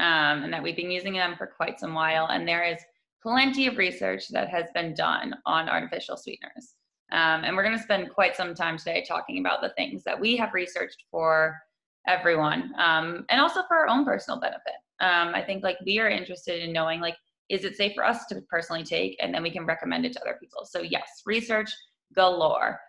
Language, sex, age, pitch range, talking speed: English, female, 20-39, 170-225 Hz, 215 wpm